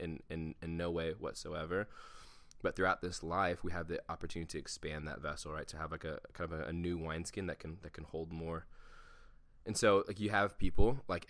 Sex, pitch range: male, 80-90 Hz